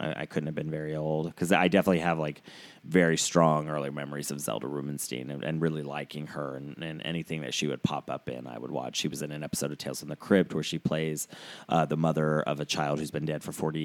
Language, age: English, 30-49